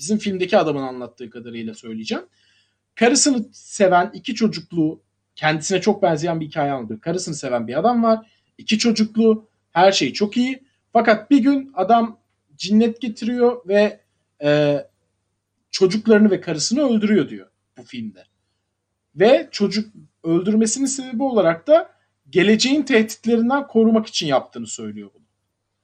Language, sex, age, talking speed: Turkish, male, 40-59, 125 wpm